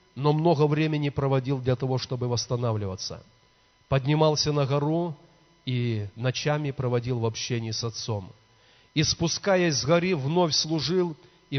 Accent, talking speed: native, 130 wpm